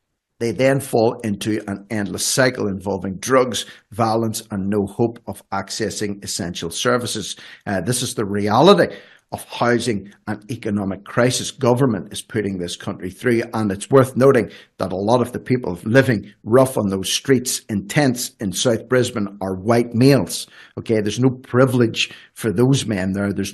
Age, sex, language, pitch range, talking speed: 50-69, male, English, 100-125 Hz, 165 wpm